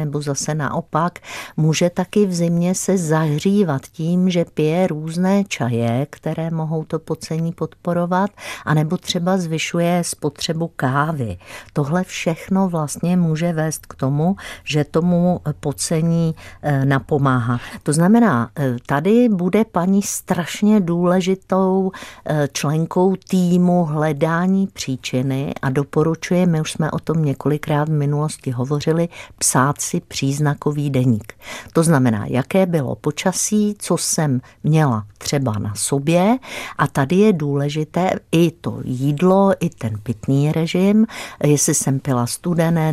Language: Czech